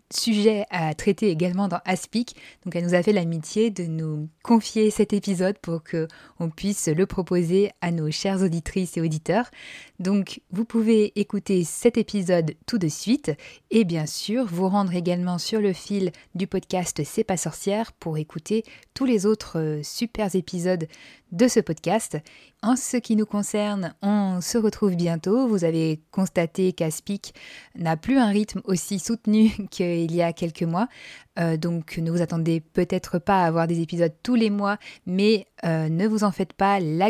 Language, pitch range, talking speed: French, 170-215 Hz, 180 wpm